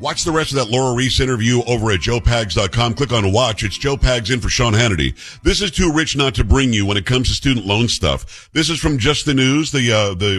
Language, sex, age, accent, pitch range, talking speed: English, male, 50-69, American, 105-140 Hz, 260 wpm